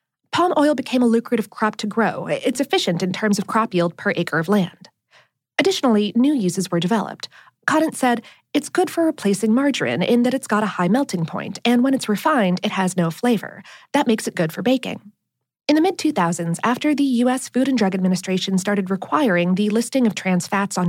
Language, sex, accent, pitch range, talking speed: English, female, American, 185-260 Hz, 205 wpm